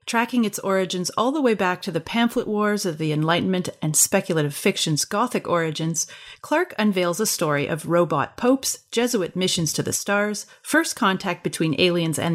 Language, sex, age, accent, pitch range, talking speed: English, female, 30-49, American, 165-250 Hz, 175 wpm